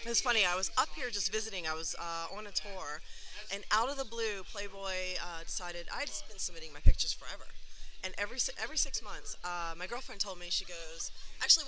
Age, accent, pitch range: 30-49, American, 170-215 Hz